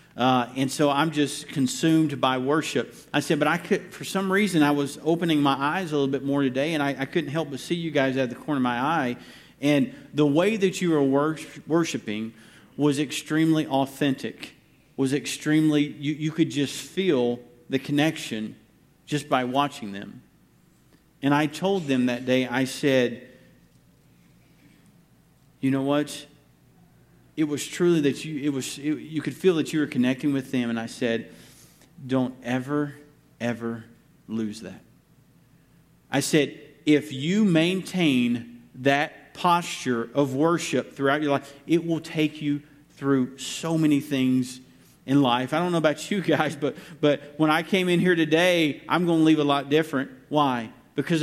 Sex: male